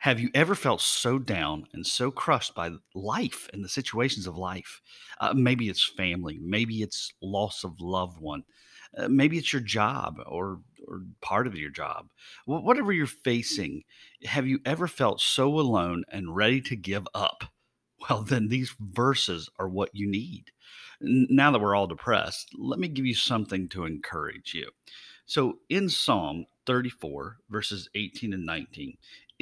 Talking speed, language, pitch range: 165 wpm, English, 95-135 Hz